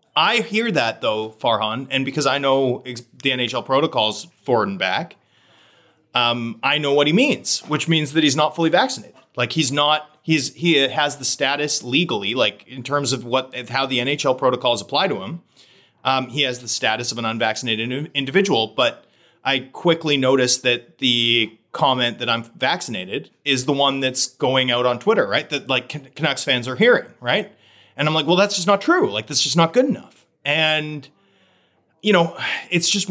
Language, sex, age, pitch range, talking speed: English, male, 30-49, 125-160 Hz, 185 wpm